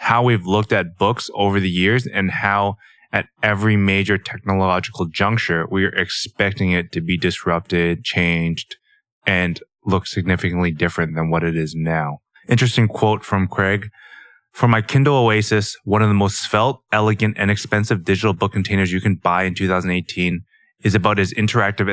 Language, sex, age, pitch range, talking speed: English, male, 20-39, 90-110 Hz, 165 wpm